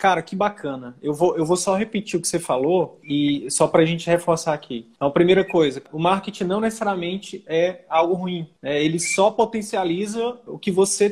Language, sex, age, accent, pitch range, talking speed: Portuguese, male, 20-39, Brazilian, 165-205 Hz, 205 wpm